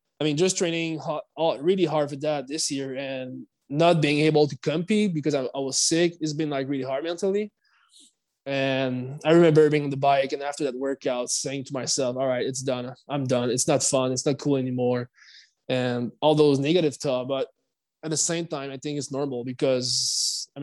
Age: 20-39